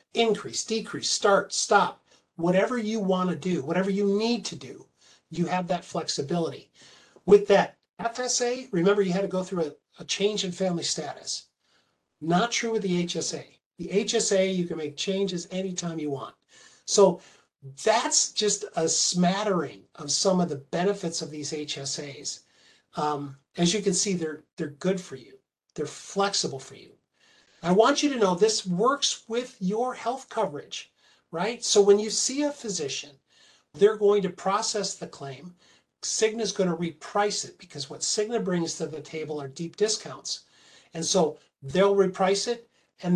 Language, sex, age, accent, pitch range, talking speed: English, male, 50-69, American, 165-205 Hz, 165 wpm